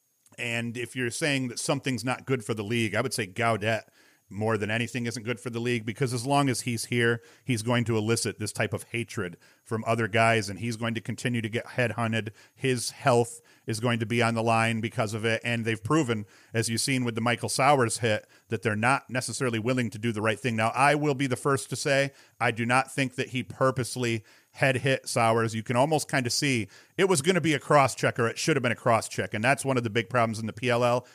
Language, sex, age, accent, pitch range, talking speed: English, male, 40-59, American, 115-135 Hz, 250 wpm